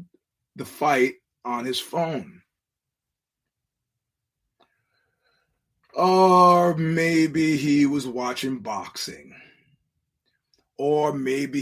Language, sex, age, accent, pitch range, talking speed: English, male, 30-49, American, 130-160 Hz, 65 wpm